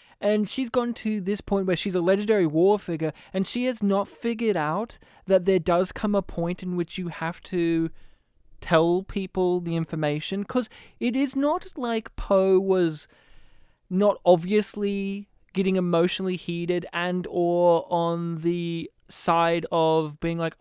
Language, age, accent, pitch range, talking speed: English, 20-39, Australian, 170-215 Hz, 155 wpm